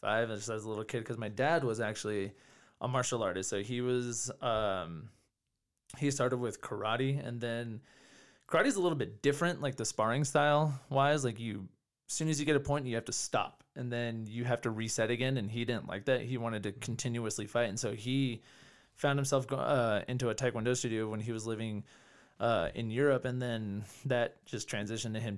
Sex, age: male, 20-39